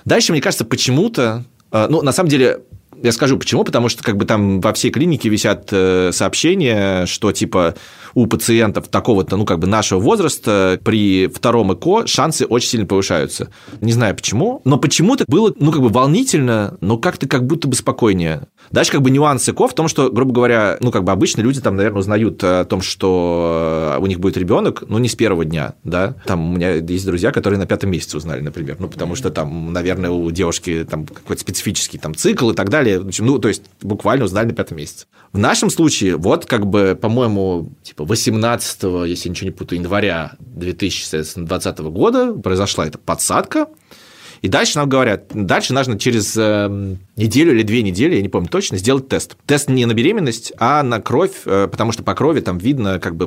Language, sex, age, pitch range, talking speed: Russian, male, 20-39, 95-120 Hz, 195 wpm